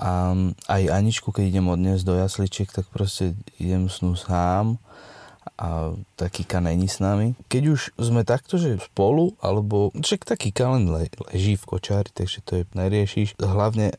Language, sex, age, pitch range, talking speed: Slovak, male, 20-39, 95-120 Hz, 155 wpm